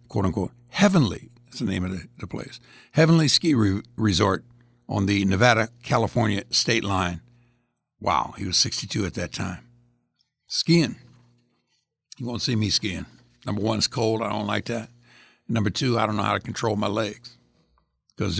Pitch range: 105-130 Hz